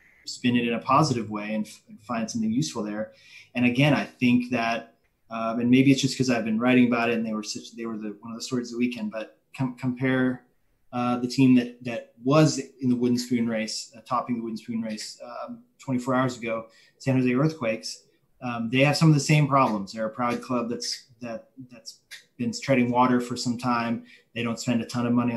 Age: 20-39